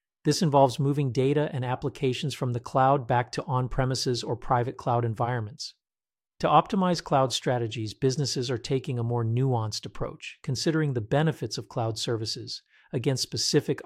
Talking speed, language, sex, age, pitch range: 150 wpm, English, male, 40-59, 120-140 Hz